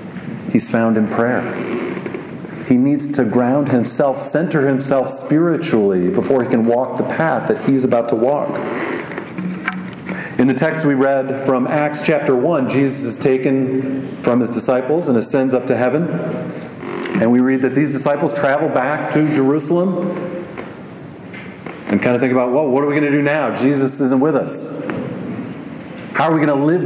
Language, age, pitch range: English, 40-59, 130-150 Hz